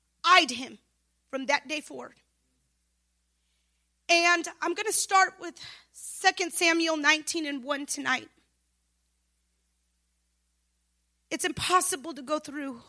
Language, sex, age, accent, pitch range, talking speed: English, female, 30-49, American, 205-350 Hz, 105 wpm